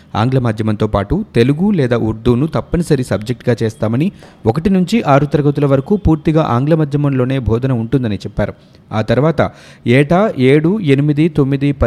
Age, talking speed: 30-49, 130 wpm